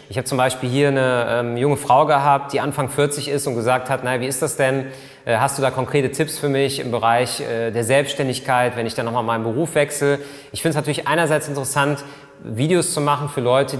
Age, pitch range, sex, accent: 30-49, 120-145 Hz, male, German